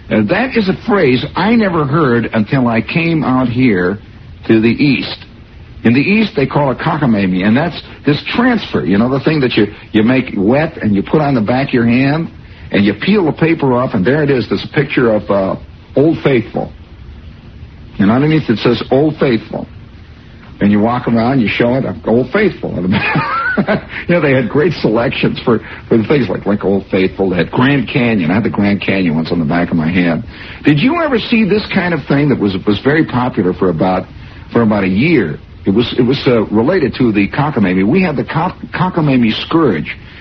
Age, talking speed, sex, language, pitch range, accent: 60-79, 205 wpm, male, English, 105-145 Hz, American